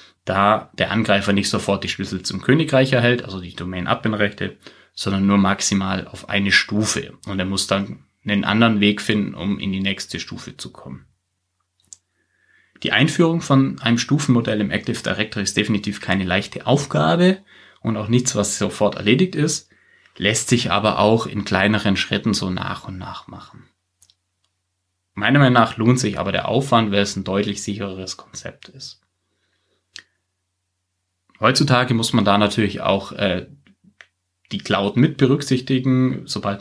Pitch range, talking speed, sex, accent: 95-120 Hz, 155 wpm, male, German